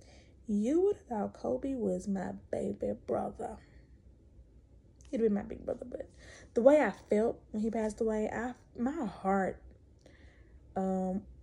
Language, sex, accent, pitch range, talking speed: English, female, American, 195-275 Hz, 140 wpm